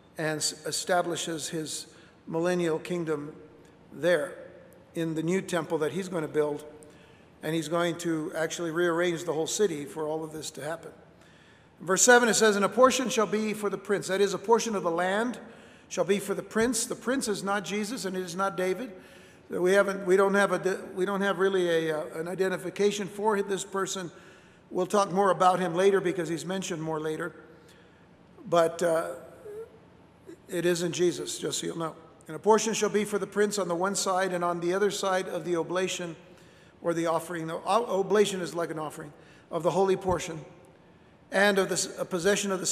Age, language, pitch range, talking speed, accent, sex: 60-79, English, 165-195 Hz, 200 wpm, American, male